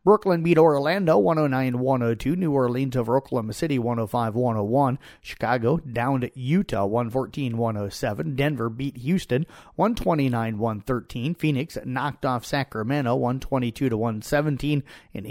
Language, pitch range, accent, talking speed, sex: English, 125-150 Hz, American, 95 wpm, male